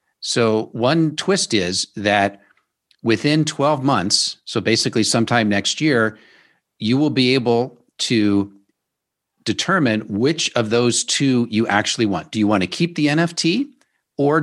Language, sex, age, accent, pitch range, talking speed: English, male, 50-69, American, 110-145 Hz, 140 wpm